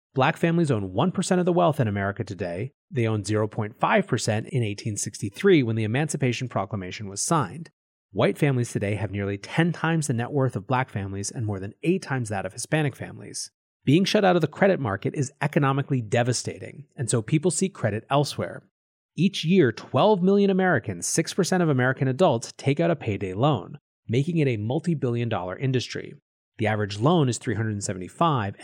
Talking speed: 175 wpm